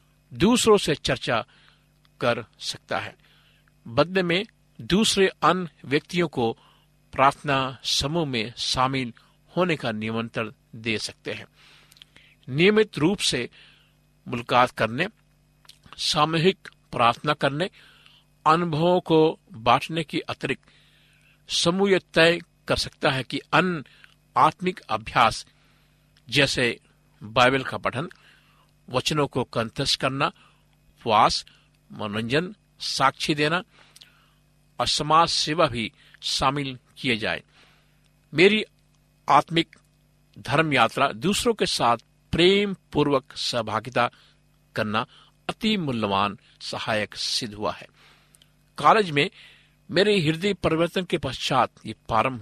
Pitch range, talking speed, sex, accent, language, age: 125-165 Hz, 100 wpm, male, native, Hindi, 50-69